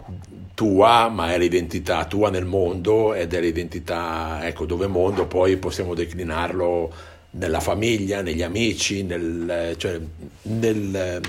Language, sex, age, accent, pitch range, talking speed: Italian, male, 50-69, native, 90-120 Hz, 120 wpm